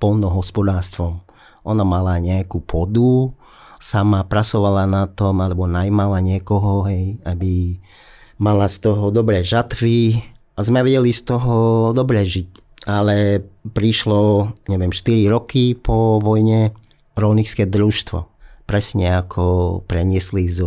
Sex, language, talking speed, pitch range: male, English, 115 wpm, 95-110 Hz